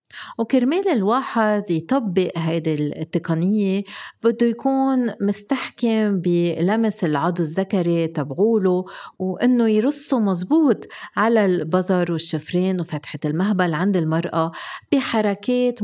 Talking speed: 90 wpm